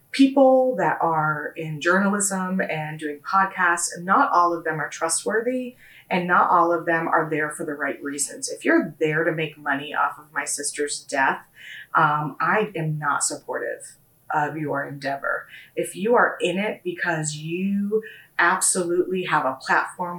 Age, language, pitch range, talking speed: 30-49, English, 160-220 Hz, 165 wpm